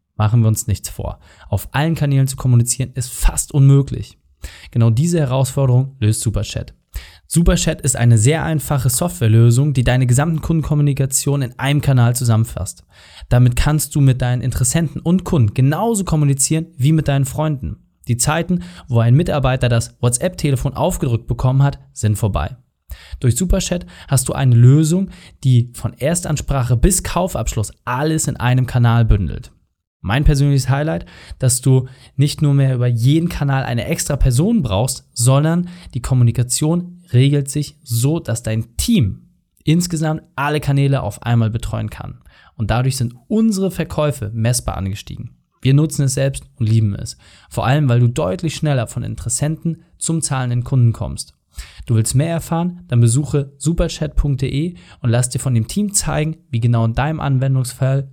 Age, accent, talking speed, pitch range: 20-39, German, 155 wpm, 115-150 Hz